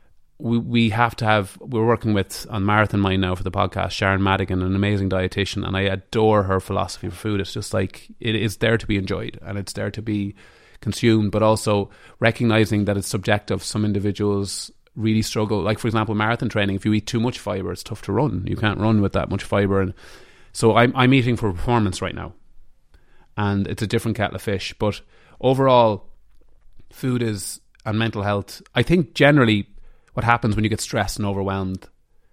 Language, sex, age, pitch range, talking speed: English, male, 30-49, 95-110 Hz, 200 wpm